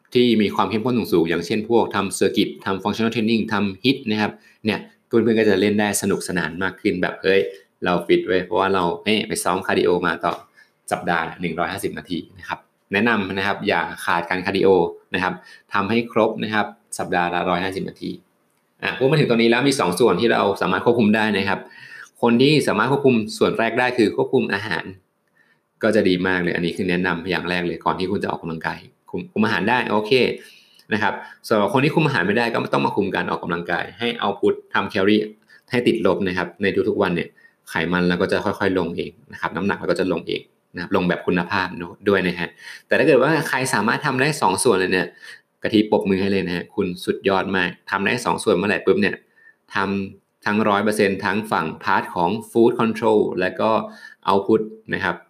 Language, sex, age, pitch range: Thai, male, 20-39, 90-115 Hz